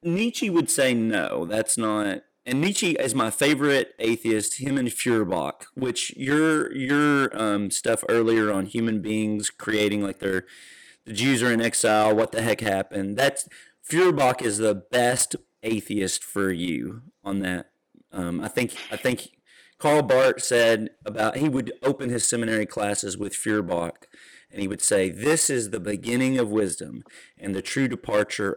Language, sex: English, male